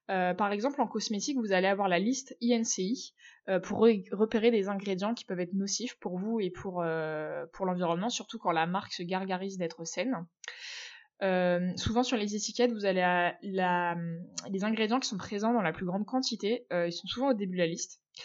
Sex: female